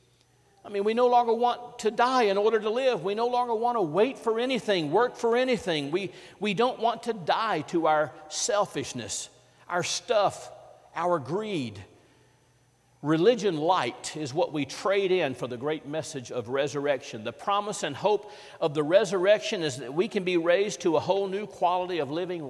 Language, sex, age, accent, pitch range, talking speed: English, male, 50-69, American, 130-190 Hz, 185 wpm